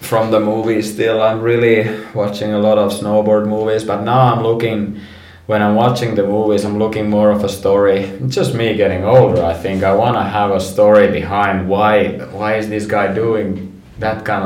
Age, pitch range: 20-39, 95-110 Hz